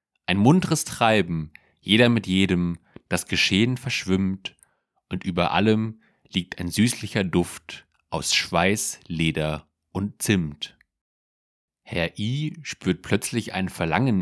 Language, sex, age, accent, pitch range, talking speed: German, male, 30-49, German, 85-110 Hz, 115 wpm